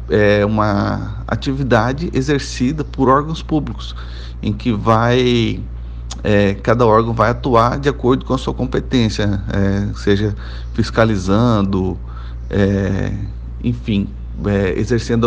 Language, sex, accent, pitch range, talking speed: Portuguese, male, Brazilian, 95-125 Hz, 90 wpm